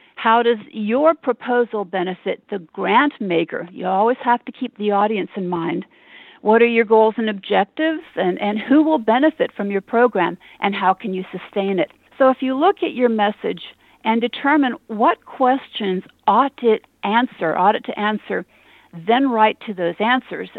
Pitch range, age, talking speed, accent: 195-250 Hz, 50-69, 175 wpm, American